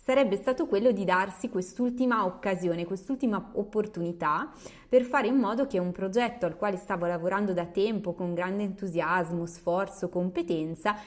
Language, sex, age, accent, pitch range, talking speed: Italian, female, 20-39, native, 175-210 Hz, 145 wpm